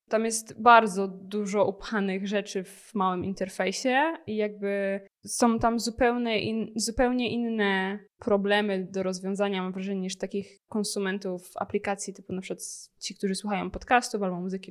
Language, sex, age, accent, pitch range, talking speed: Polish, female, 20-39, native, 190-225 Hz, 140 wpm